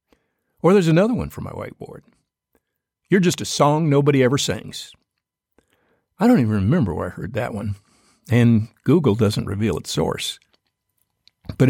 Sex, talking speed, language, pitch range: male, 155 wpm, English, 105-170 Hz